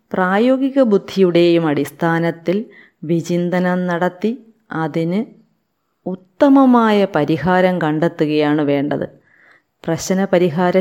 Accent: native